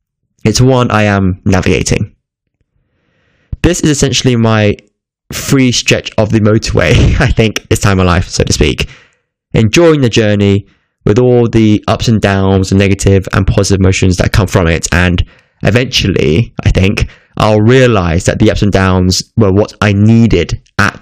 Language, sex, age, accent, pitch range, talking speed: English, male, 10-29, British, 100-125 Hz, 165 wpm